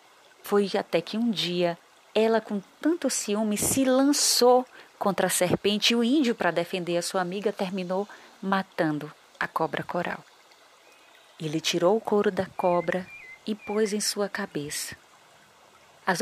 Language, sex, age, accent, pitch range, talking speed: Portuguese, female, 30-49, Brazilian, 170-225 Hz, 145 wpm